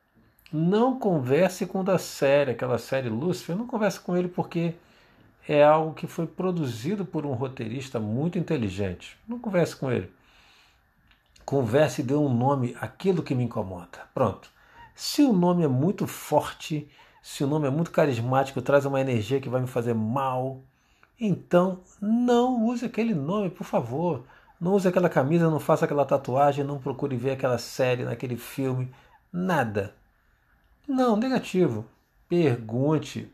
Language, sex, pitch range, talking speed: Portuguese, male, 125-180 Hz, 155 wpm